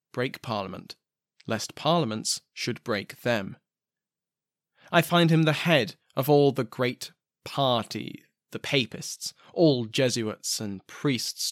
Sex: male